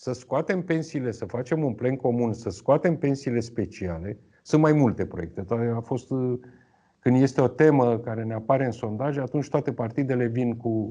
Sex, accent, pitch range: male, native, 110-145 Hz